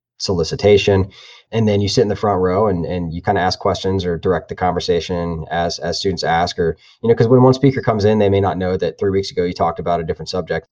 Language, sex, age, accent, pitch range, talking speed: English, male, 20-39, American, 90-110 Hz, 265 wpm